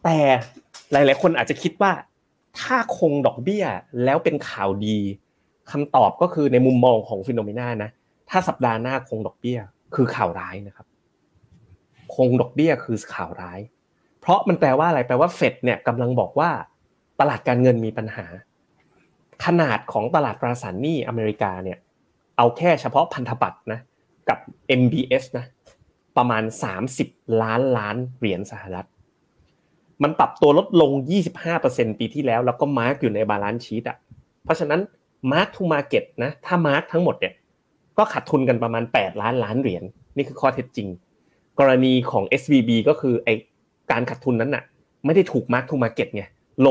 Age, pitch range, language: 30-49, 110-140 Hz, Thai